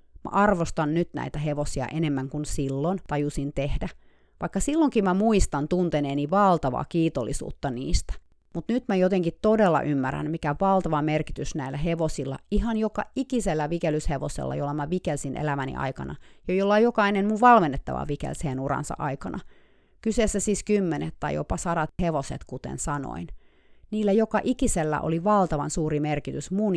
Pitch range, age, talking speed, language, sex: 140-190 Hz, 30-49, 140 wpm, Finnish, female